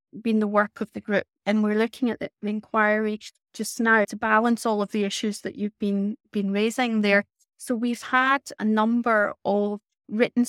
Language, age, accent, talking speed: English, 30-49, British, 190 wpm